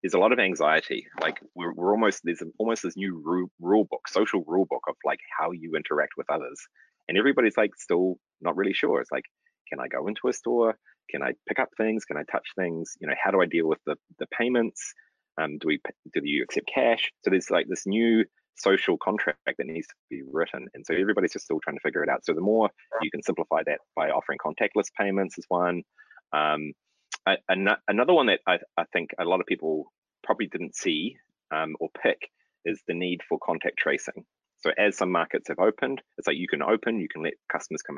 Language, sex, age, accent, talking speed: English, male, 30-49, Australian, 225 wpm